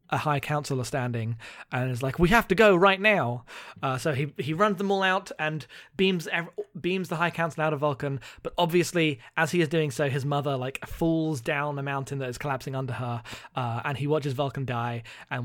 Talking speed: 220 wpm